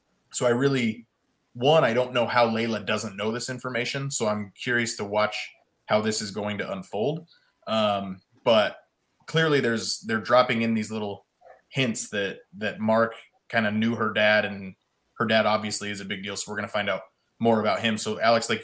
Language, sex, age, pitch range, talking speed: English, male, 20-39, 110-130 Hz, 200 wpm